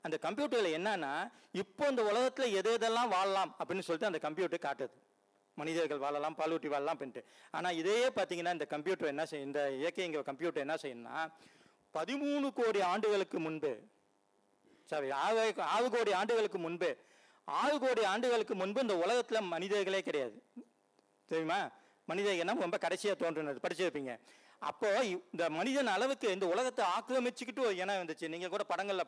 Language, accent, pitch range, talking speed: Tamil, native, 155-230 Hz, 130 wpm